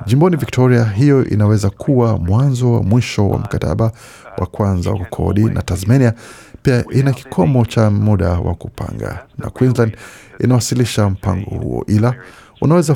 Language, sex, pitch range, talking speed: Swahili, male, 100-125 Hz, 140 wpm